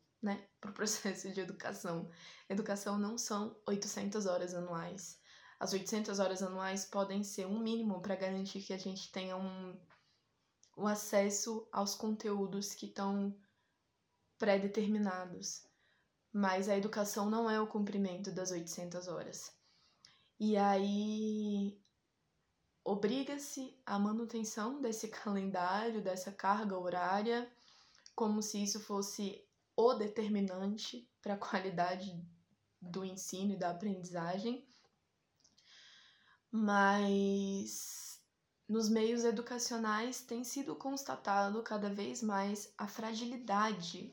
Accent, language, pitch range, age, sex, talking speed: Brazilian, Portuguese, 190-220 Hz, 20-39, female, 105 wpm